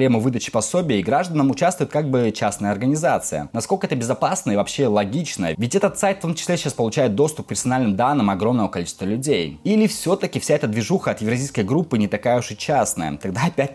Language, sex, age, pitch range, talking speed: Russian, male, 20-39, 105-140 Hz, 195 wpm